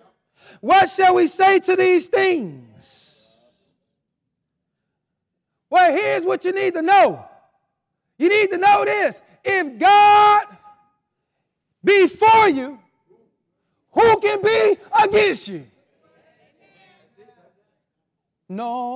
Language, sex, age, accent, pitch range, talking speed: English, male, 40-59, American, 215-350 Hz, 95 wpm